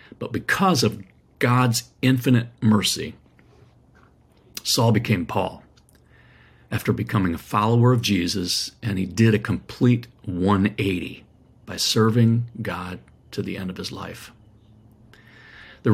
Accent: American